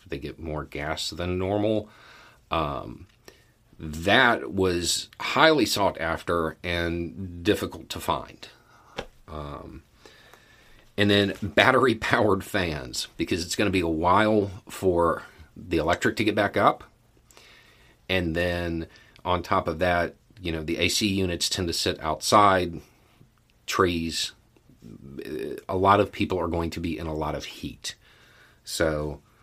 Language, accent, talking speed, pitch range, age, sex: English, American, 135 wpm, 80-105 Hz, 40-59, male